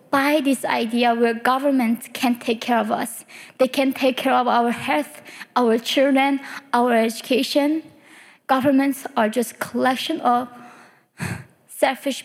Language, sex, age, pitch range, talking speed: English, female, 20-39, 235-285 Hz, 135 wpm